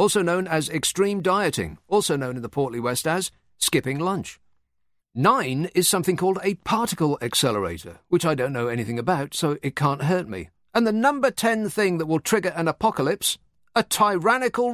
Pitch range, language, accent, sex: 110-175 Hz, English, British, male